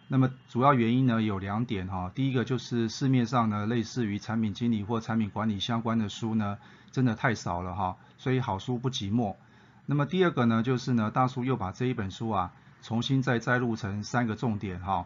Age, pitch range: 30-49, 105-125 Hz